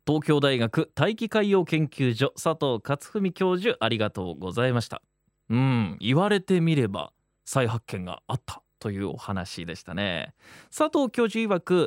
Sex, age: male, 20-39